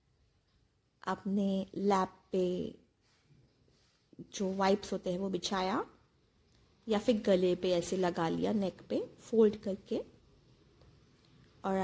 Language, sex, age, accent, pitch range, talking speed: Hindi, female, 20-39, native, 190-230 Hz, 105 wpm